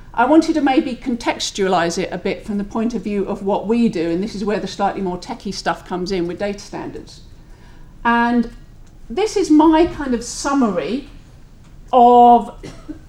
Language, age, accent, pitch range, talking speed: English, 40-59, British, 195-240 Hz, 185 wpm